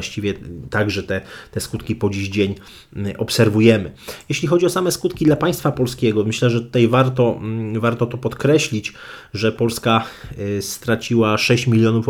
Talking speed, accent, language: 145 wpm, native, Polish